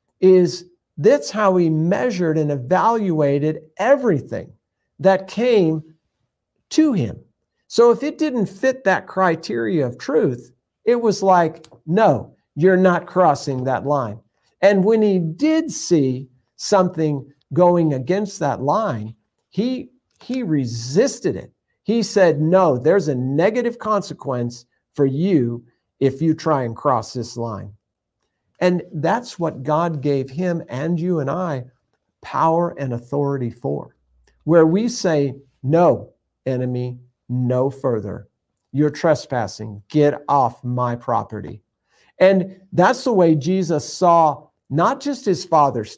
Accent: American